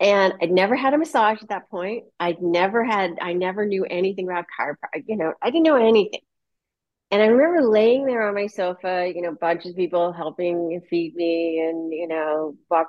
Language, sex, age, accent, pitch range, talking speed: English, female, 30-49, American, 175-220 Hz, 205 wpm